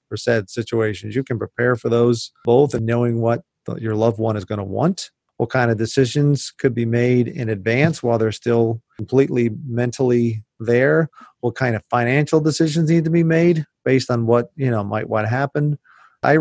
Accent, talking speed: American, 195 wpm